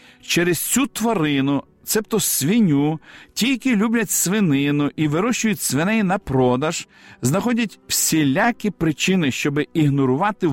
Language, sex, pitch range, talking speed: Ukrainian, male, 140-205 Hz, 110 wpm